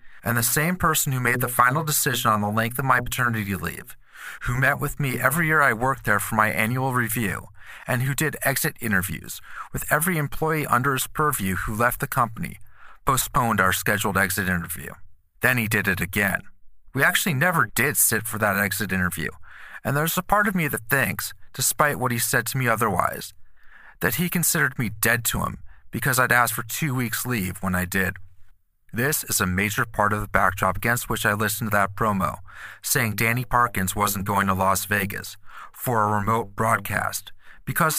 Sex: male